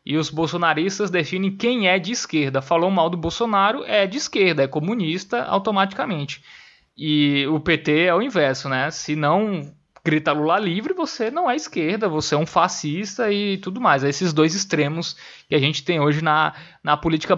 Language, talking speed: Portuguese, 180 wpm